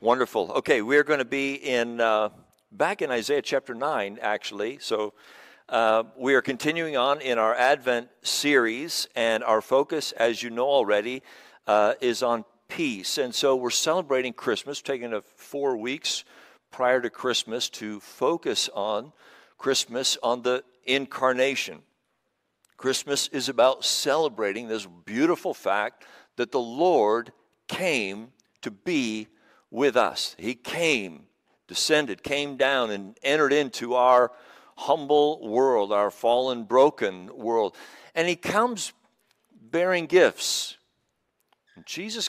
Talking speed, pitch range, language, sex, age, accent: 130 wpm, 115-140 Hz, English, male, 60-79, American